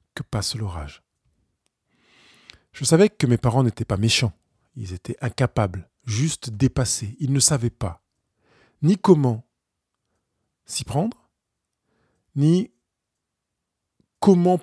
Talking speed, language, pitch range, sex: 105 wpm, French, 105-140 Hz, male